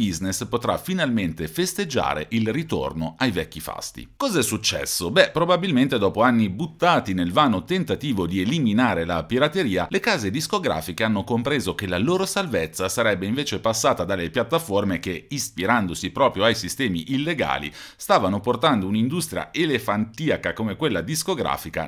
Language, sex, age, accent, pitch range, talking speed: Italian, male, 40-59, native, 90-140 Hz, 135 wpm